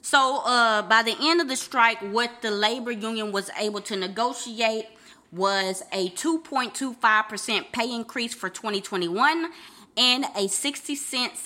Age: 20-39